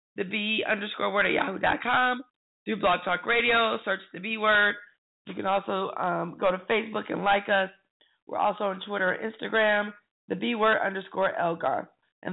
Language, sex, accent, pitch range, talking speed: English, female, American, 175-220 Hz, 175 wpm